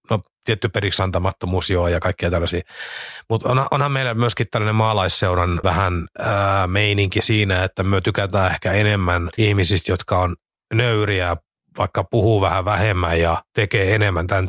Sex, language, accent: male, Finnish, native